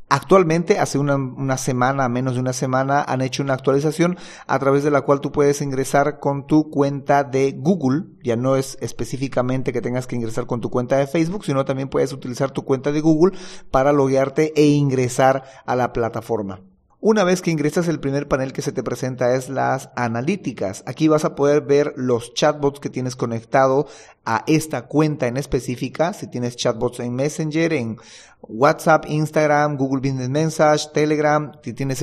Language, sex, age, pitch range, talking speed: Spanish, male, 40-59, 120-145 Hz, 180 wpm